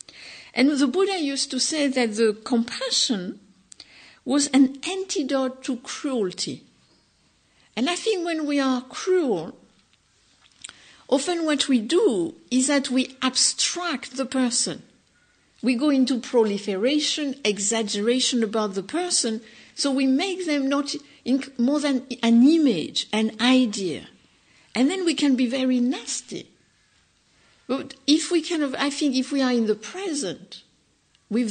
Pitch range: 235-300 Hz